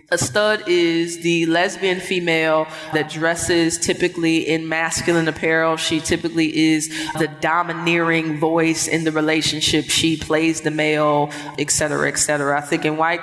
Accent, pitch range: American, 150-180 Hz